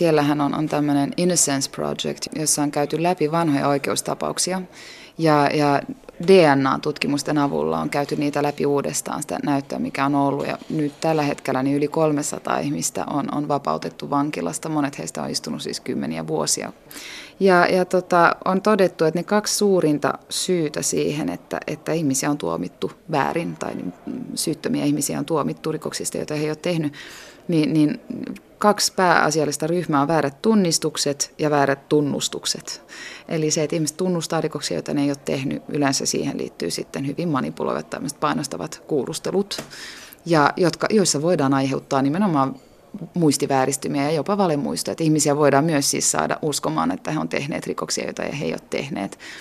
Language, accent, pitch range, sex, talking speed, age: Finnish, native, 140-170 Hz, female, 155 wpm, 20-39